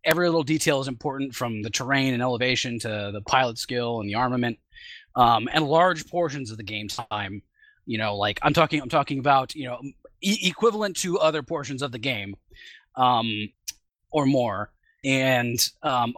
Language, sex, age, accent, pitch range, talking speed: English, male, 20-39, American, 120-160 Hz, 175 wpm